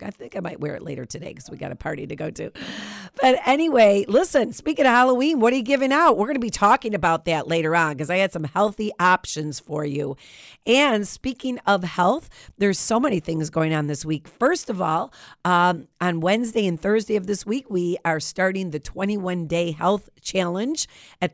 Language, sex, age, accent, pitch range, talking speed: English, female, 40-59, American, 165-215 Hz, 215 wpm